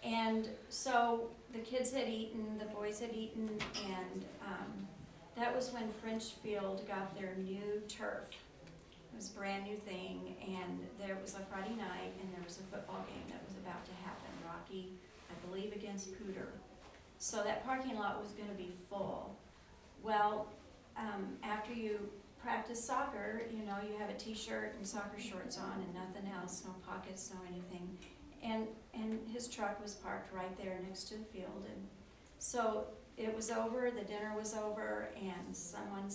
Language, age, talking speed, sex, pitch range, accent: English, 40-59, 175 wpm, female, 195-225 Hz, American